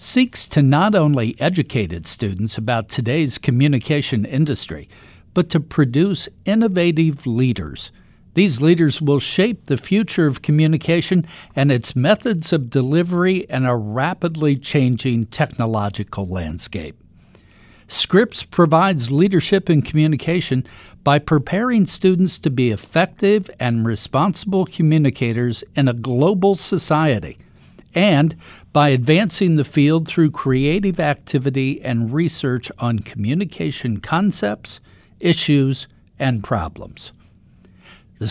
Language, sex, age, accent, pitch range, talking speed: English, male, 60-79, American, 120-170 Hz, 110 wpm